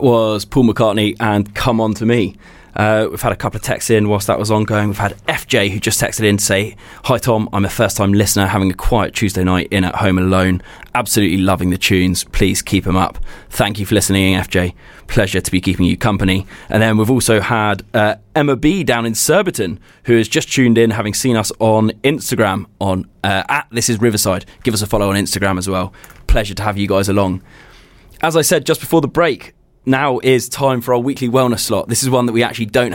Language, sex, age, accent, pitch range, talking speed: English, male, 20-39, British, 100-120 Hz, 230 wpm